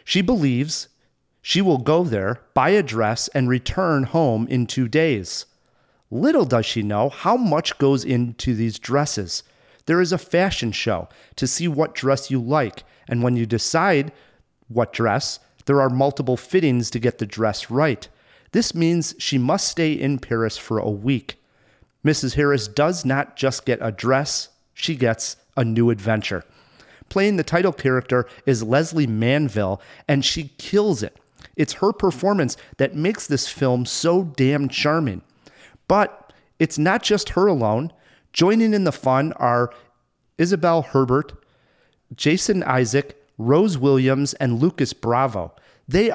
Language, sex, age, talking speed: English, male, 40-59, 150 wpm